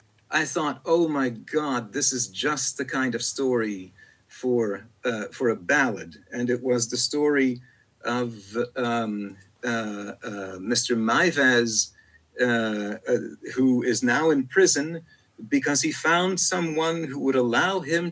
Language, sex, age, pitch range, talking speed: English, male, 50-69, 125-170 Hz, 140 wpm